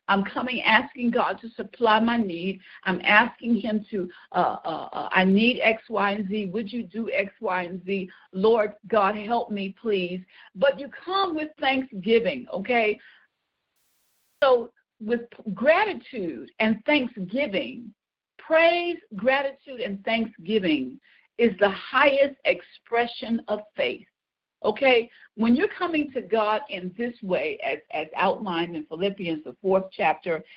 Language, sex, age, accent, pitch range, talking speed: English, female, 50-69, American, 195-265 Hz, 140 wpm